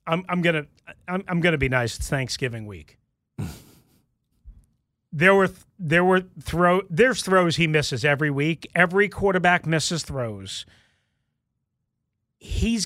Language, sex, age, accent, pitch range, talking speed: English, male, 40-59, American, 135-185 Hz, 125 wpm